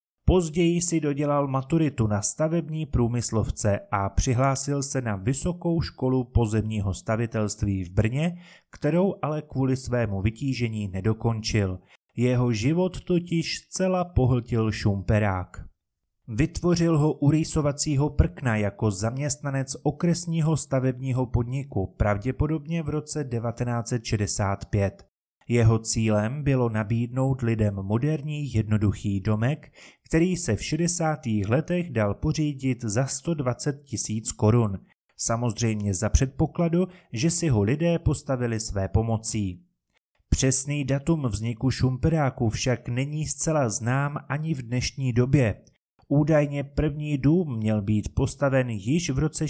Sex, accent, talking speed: male, native, 115 wpm